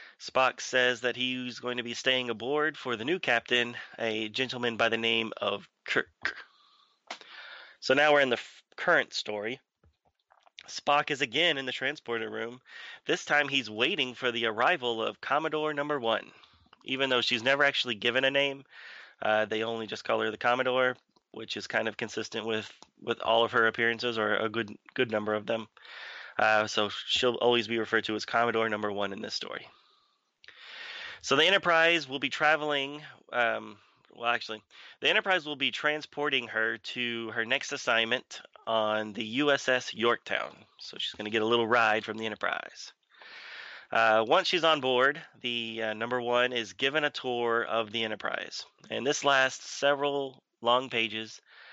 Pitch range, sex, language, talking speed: 115-135 Hz, male, English, 170 wpm